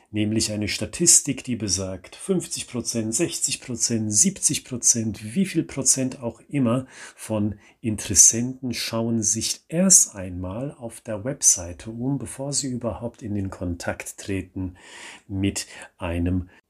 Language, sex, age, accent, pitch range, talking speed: German, male, 40-59, German, 90-115 Hz, 115 wpm